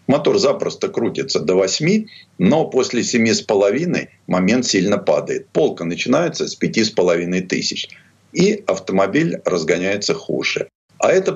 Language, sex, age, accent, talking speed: Russian, male, 50-69, native, 115 wpm